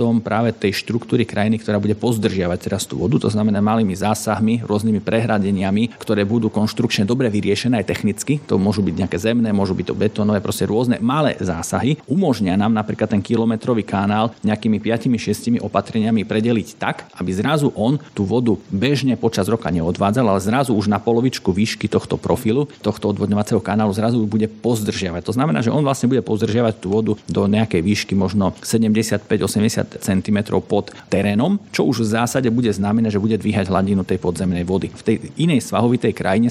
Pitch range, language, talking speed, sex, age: 100-115 Hz, Slovak, 175 wpm, male, 40-59